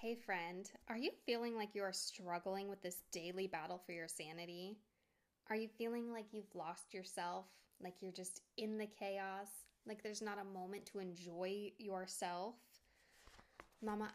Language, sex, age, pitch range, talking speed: English, female, 10-29, 185-220 Hz, 160 wpm